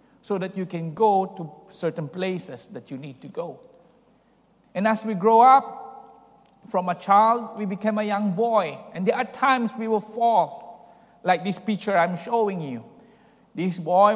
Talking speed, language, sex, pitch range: 175 wpm, English, male, 185-225 Hz